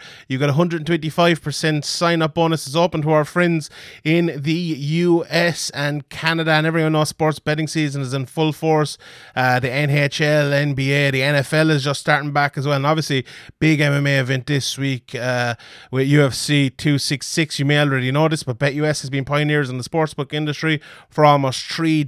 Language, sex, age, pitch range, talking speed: English, male, 30-49, 135-155 Hz, 175 wpm